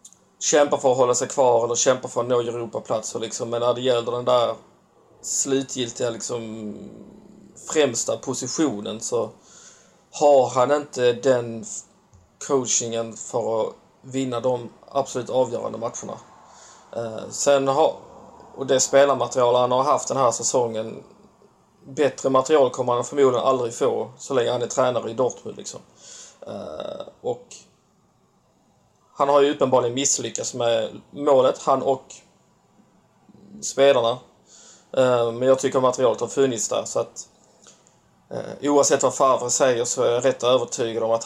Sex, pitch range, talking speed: male, 120-135 Hz, 135 wpm